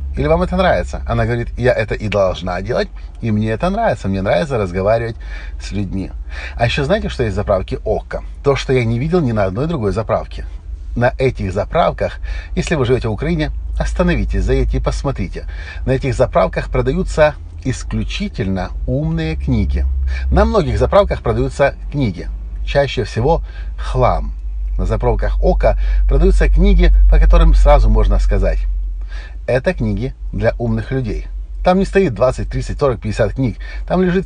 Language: Russian